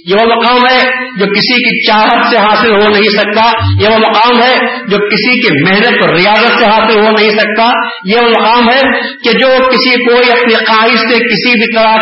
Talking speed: 210 wpm